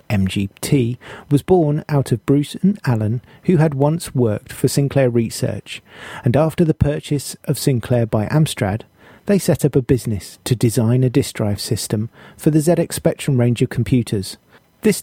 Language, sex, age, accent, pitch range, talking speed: English, male, 40-59, British, 110-145 Hz, 170 wpm